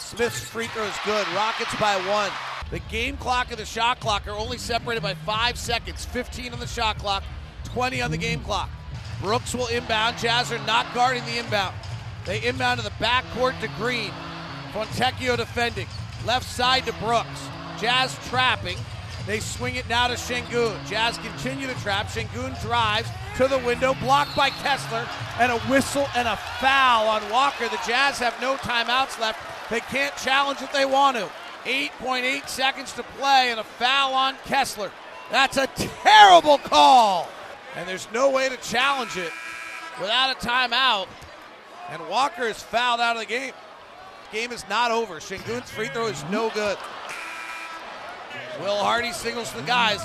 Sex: male